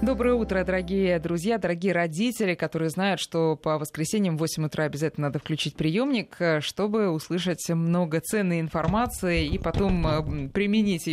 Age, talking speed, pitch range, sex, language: 20-39, 140 wpm, 155-210 Hz, female, Russian